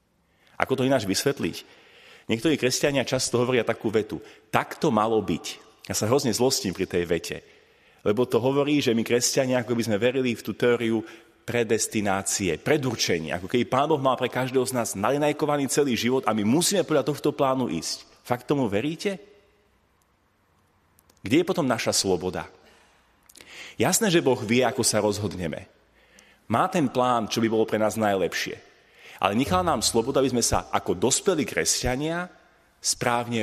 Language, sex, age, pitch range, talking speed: Slovak, male, 30-49, 110-145 Hz, 160 wpm